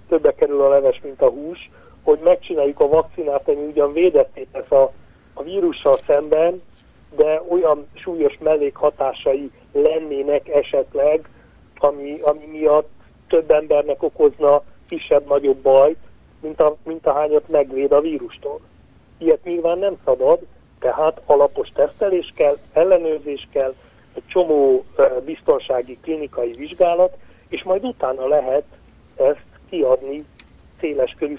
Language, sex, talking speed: Hungarian, male, 120 wpm